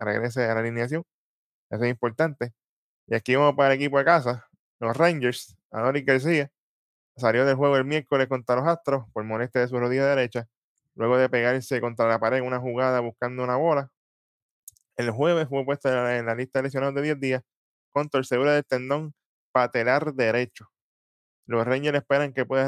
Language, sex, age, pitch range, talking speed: Spanish, male, 10-29, 120-140 Hz, 180 wpm